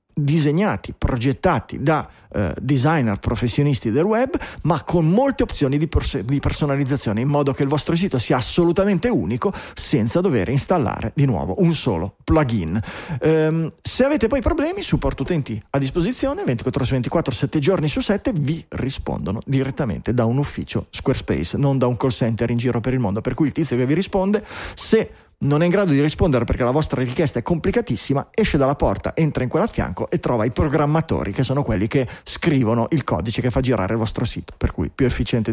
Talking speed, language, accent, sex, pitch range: 195 wpm, Italian, native, male, 125-175 Hz